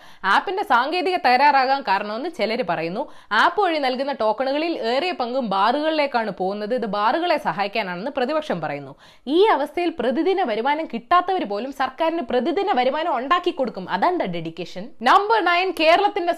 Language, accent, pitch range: Malayalam, native, 215-315 Hz